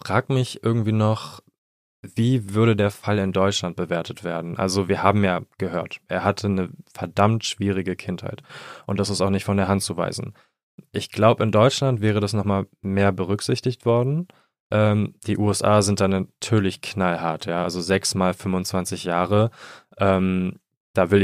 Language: German